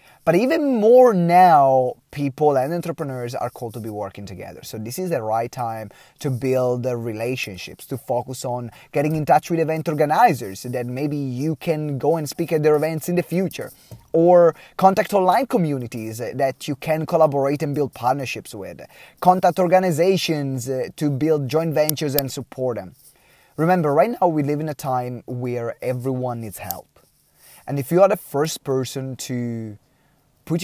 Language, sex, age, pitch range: English, male, 20-39, 120-155 Hz